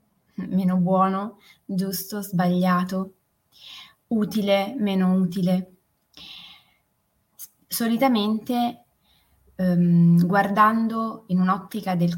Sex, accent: female, native